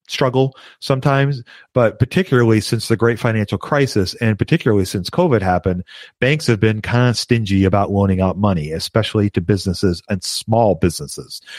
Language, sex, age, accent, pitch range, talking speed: English, male, 40-59, American, 95-115 Hz, 155 wpm